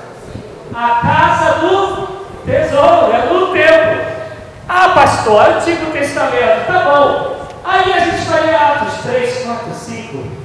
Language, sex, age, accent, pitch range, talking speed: Portuguese, male, 40-59, Brazilian, 195-325 Hz, 130 wpm